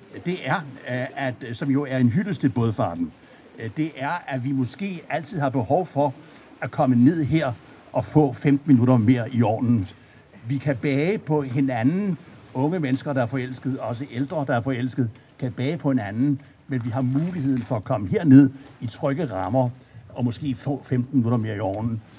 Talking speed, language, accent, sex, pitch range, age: 185 wpm, Danish, native, male, 125-145 Hz, 60-79